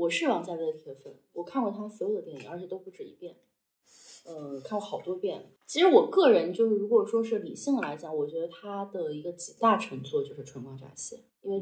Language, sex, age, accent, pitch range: Chinese, female, 20-39, native, 155-230 Hz